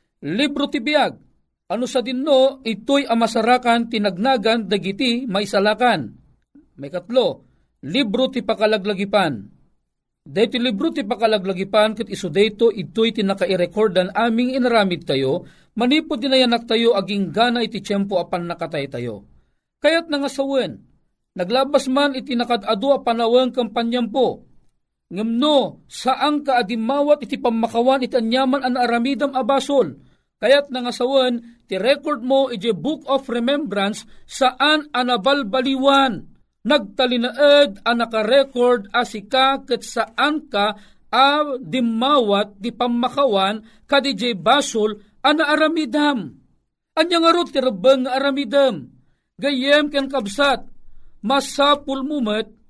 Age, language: 50-69, Filipino